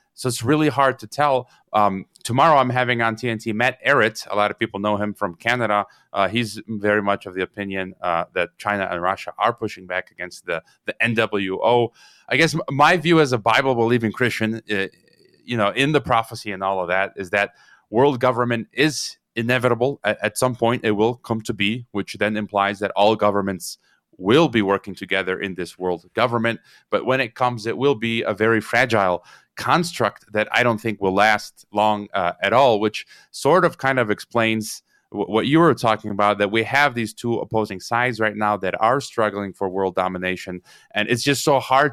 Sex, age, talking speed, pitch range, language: male, 30-49, 205 wpm, 100-120 Hz, English